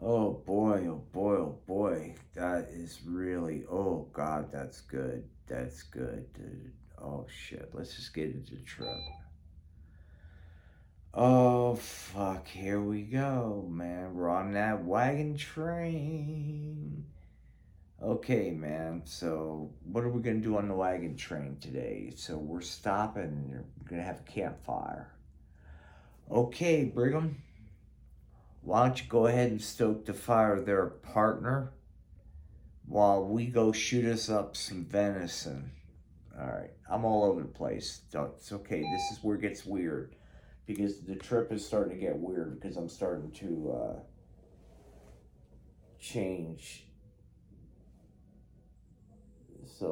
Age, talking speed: 50-69, 130 wpm